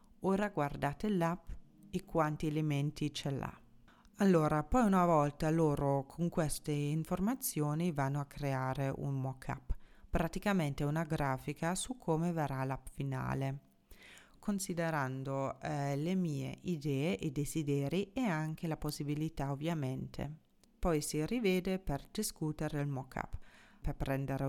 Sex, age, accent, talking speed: female, 30-49, native, 125 wpm